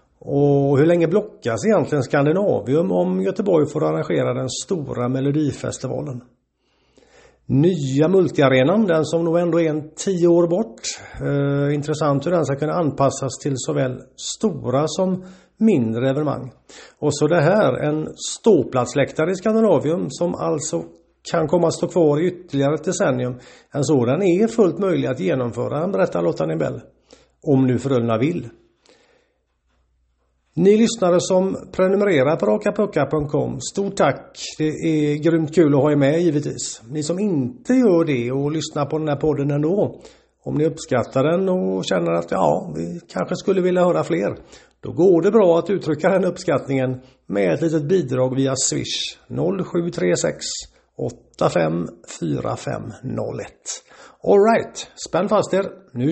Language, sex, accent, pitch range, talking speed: Swedish, male, native, 130-175 Hz, 145 wpm